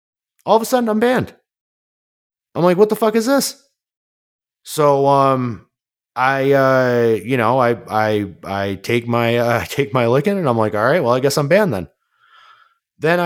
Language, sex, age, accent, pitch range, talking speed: English, male, 30-49, American, 105-175 Hz, 180 wpm